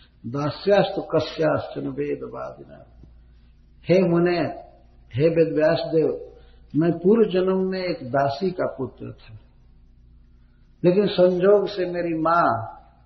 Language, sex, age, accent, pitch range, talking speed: Hindi, male, 60-79, native, 110-170 Hz, 105 wpm